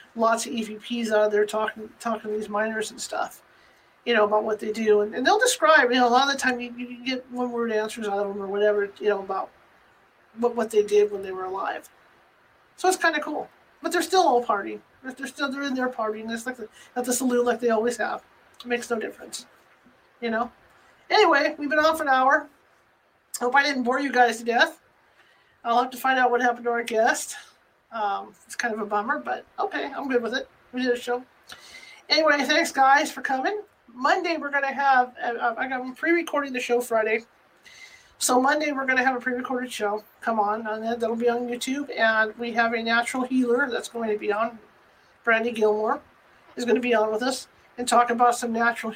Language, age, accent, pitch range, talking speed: English, 40-59, American, 220-265 Hz, 215 wpm